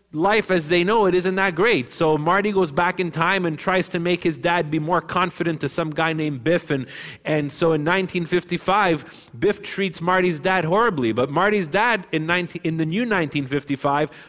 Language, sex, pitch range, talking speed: English, male, 130-180 Hz, 195 wpm